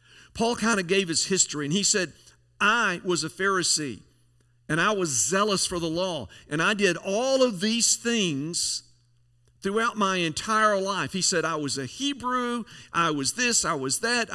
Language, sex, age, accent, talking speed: English, male, 50-69, American, 180 wpm